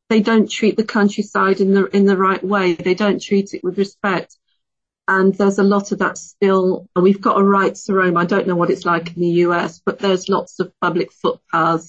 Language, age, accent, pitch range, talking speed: English, 40-59, British, 170-195 Hz, 230 wpm